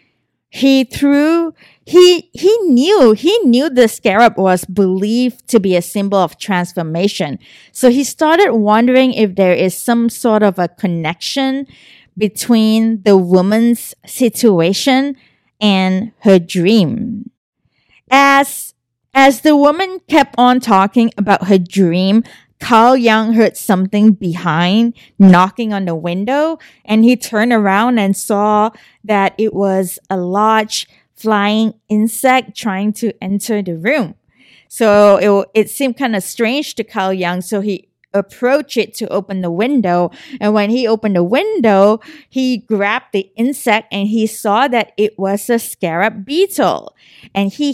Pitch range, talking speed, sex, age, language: 195-245 Hz, 140 wpm, female, 20-39, English